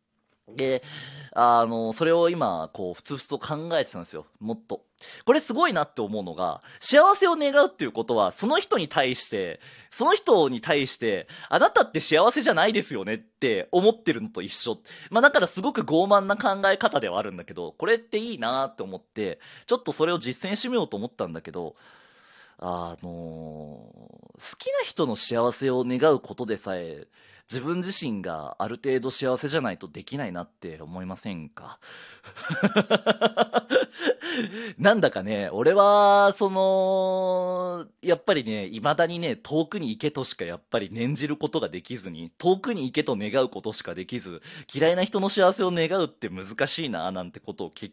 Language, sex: Japanese, male